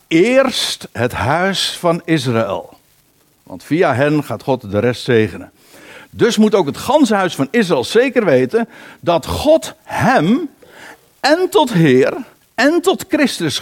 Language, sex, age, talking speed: Dutch, male, 60-79, 140 wpm